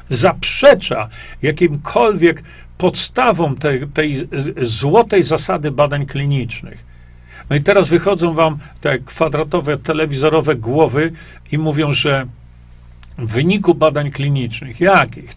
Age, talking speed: 50-69, 100 wpm